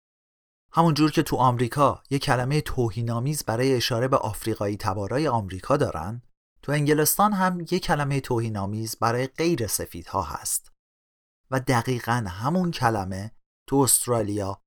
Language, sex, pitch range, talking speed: Persian, male, 100-140 Hz, 125 wpm